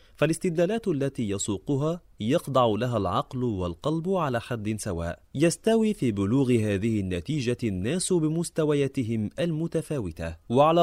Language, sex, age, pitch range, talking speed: Arabic, male, 30-49, 95-150 Hz, 105 wpm